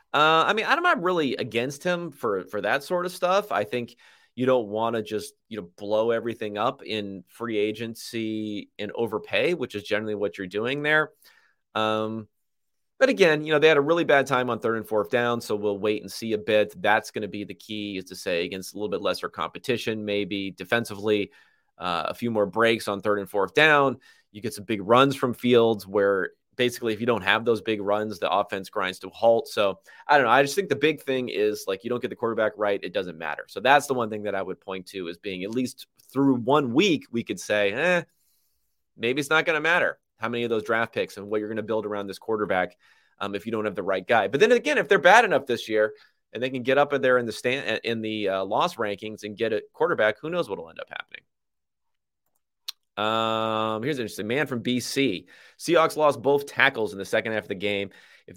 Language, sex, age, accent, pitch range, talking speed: English, male, 30-49, American, 105-140 Hz, 240 wpm